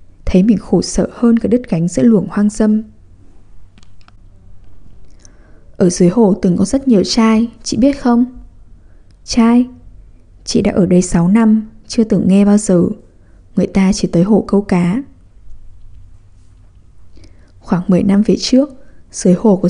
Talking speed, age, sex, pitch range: 150 wpm, 10-29, female, 165-215 Hz